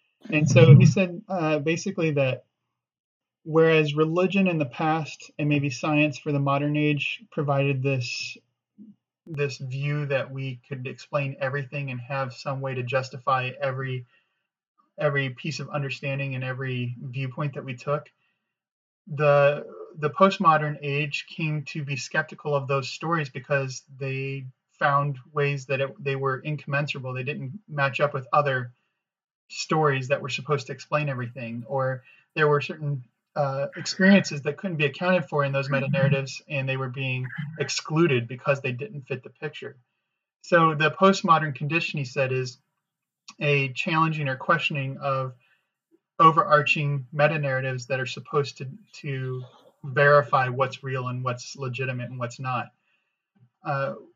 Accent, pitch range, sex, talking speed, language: American, 135-160 Hz, male, 150 wpm, English